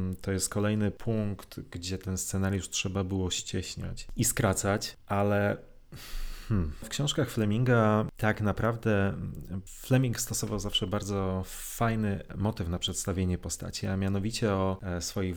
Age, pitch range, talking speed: 30-49, 95-110 Hz, 120 wpm